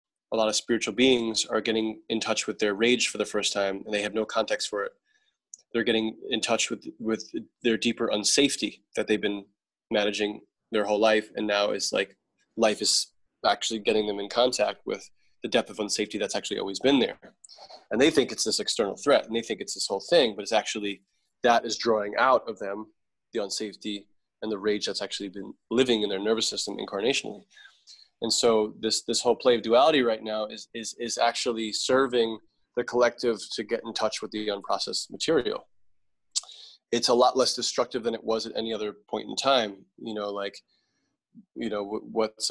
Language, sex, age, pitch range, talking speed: English, male, 20-39, 105-120 Hz, 200 wpm